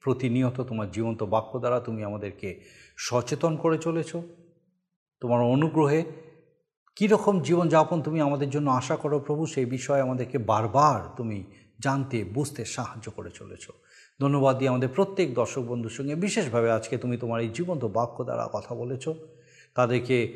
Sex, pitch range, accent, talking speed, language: male, 120-165 Hz, native, 140 wpm, Bengali